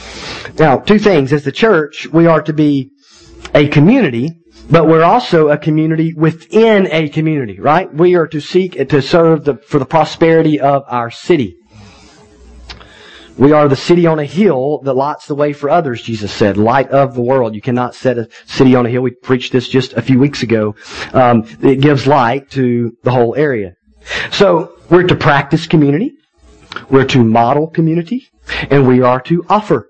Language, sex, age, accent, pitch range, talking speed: English, male, 40-59, American, 135-190 Hz, 180 wpm